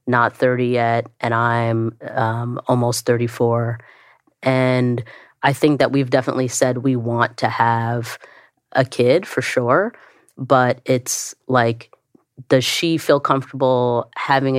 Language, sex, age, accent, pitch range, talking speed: English, female, 30-49, American, 120-130 Hz, 130 wpm